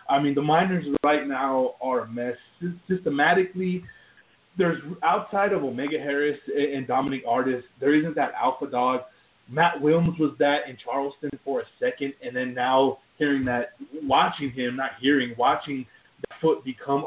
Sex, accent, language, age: male, American, English, 20-39